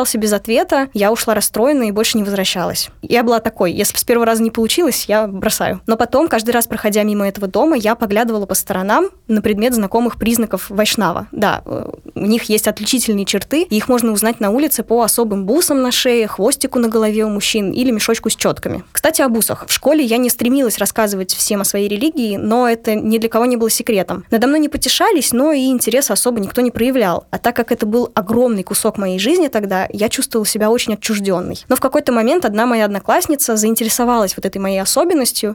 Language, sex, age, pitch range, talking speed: Russian, female, 10-29, 210-245 Hz, 205 wpm